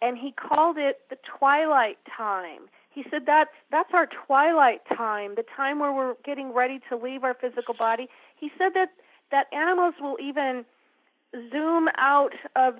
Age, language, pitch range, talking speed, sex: 40-59, English, 240-285 Hz, 160 wpm, female